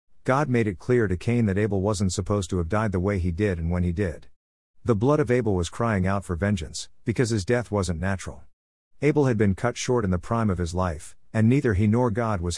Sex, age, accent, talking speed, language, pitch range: male, 50-69, American, 250 wpm, English, 90-115 Hz